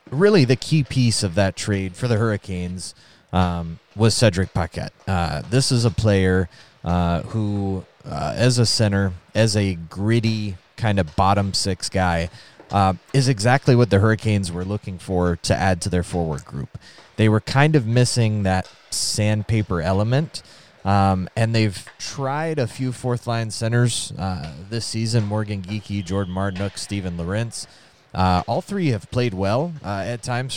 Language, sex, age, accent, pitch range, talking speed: English, male, 30-49, American, 95-115 Hz, 160 wpm